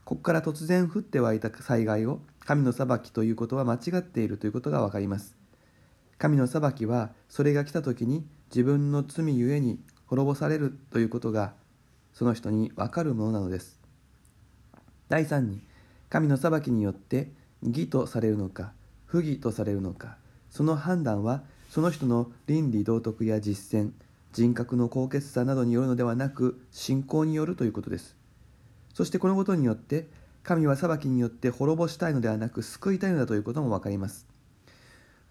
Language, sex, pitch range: Japanese, male, 115-145 Hz